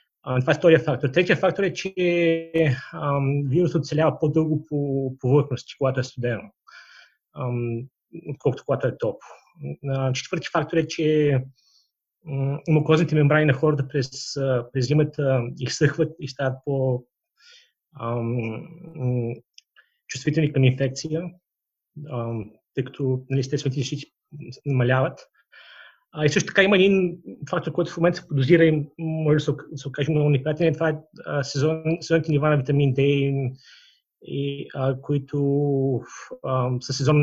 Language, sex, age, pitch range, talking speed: Bulgarian, male, 30-49, 130-155 Hz, 115 wpm